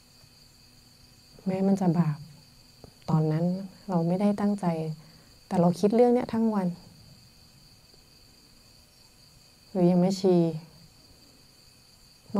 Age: 30-49